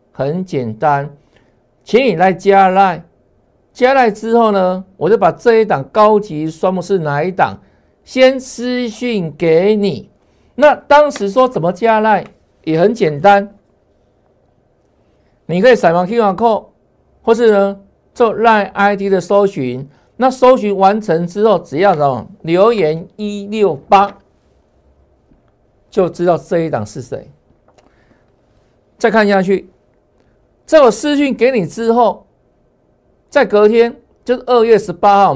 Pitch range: 160-225 Hz